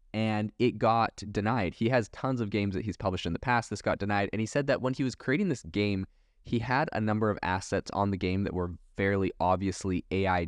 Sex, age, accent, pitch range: male, 20-39, American, 95-115 Hz